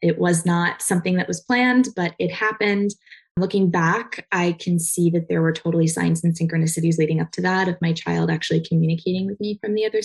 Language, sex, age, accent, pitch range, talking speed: English, female, 20-39, American, 165-190 Hz, 215 wpm